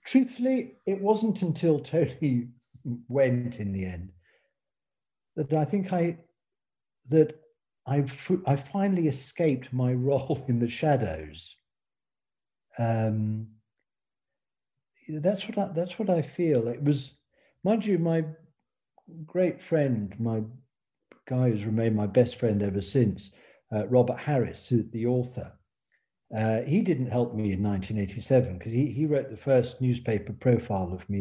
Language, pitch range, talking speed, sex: English, 110-145 Hz, 135 wpm, male